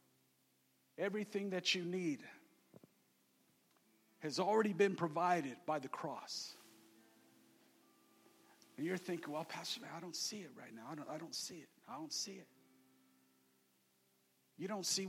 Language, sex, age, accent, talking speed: English, male, 40-59, American, 140 wpm